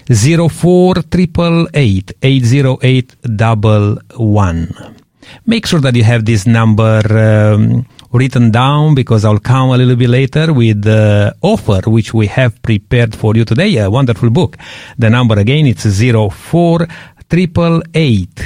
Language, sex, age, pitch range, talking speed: English, male, 50-69, 110-155 Hz, 155 wpm